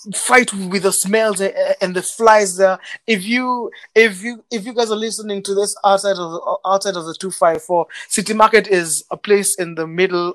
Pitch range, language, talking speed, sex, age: 175-225 Hz, English, 210 wpm, male, 20-39